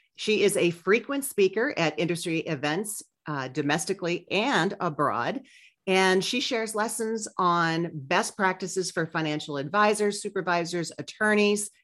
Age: 40-59